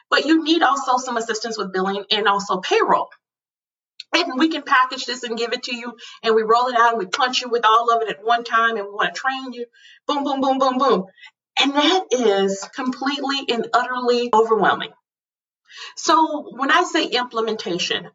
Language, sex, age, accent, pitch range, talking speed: English, female, 30-49, American, 205-260 Hz, 200 wpm